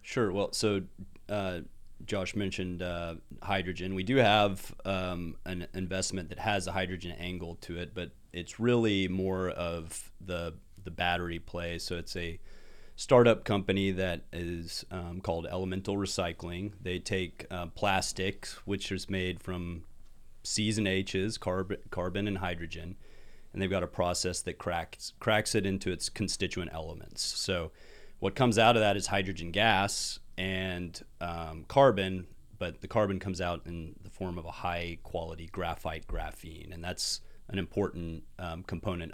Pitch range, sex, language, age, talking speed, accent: 85-100 Hz, male, English, 30-49, 155 wpm, American